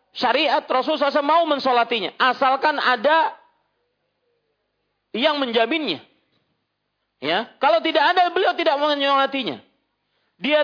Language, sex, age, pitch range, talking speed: Malay, male, 40-59, 210-300 Hz, 95 wpm